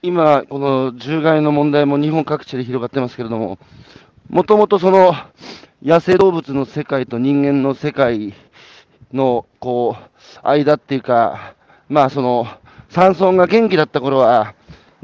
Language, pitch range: Japanese, 130-175 Hz